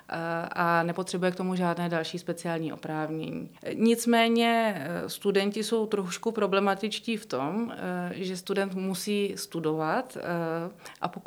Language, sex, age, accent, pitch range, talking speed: Czech, female, 30-49, native, 170-195 Hz, 105 wpm